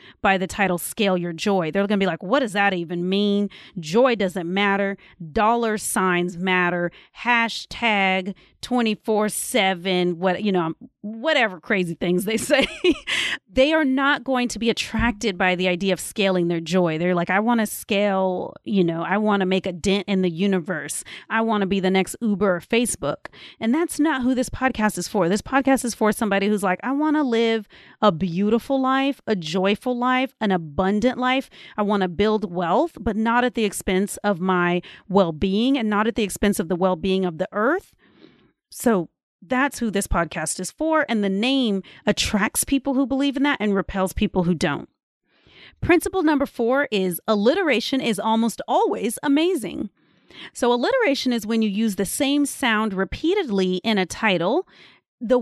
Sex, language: female, English